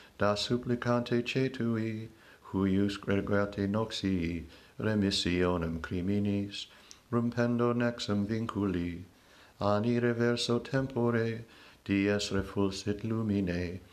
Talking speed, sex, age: 75 wpm, male, 60-79